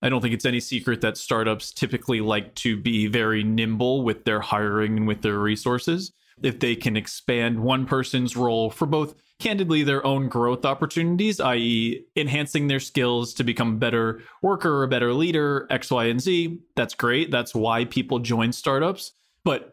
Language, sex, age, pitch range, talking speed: English, male, 20-39, 115-150 Hz, 180 wpm